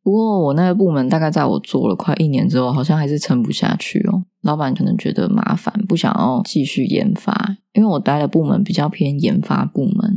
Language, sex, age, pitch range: Chinese, female, 20-39, 150-205 Hz